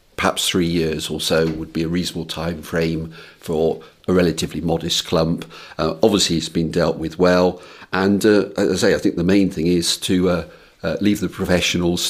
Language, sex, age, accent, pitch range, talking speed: English, male, 50-69, British, 85-90 Hz, 200 wpm